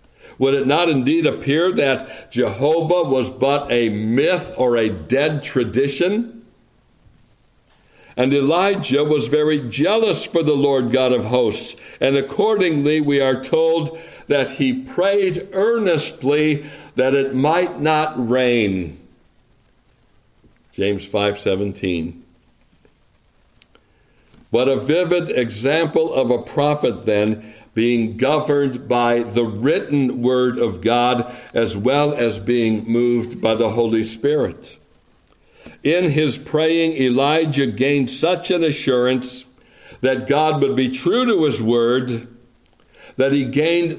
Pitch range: 120-155 Hz